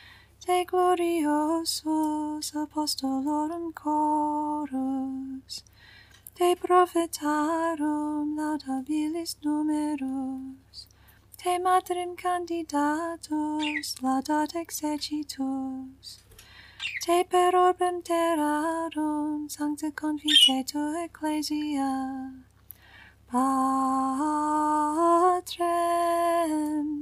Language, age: English, 30-49